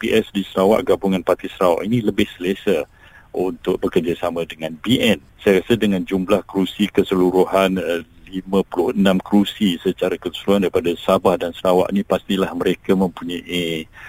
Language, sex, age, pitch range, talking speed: Malay, male, 50-69, 85-100 Hz, 130 wpm